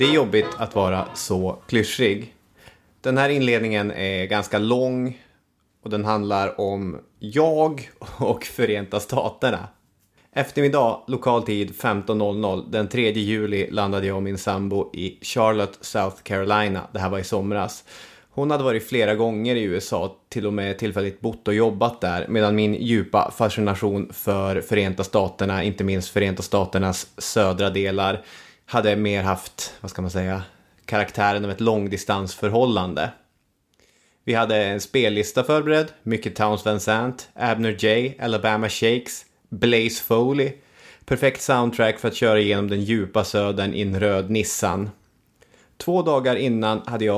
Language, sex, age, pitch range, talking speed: English, male, 30-49, 100-115 Hz, 145 wpm